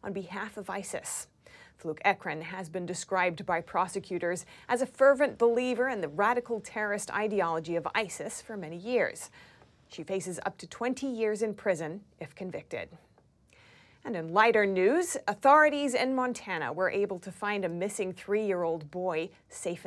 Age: 30-49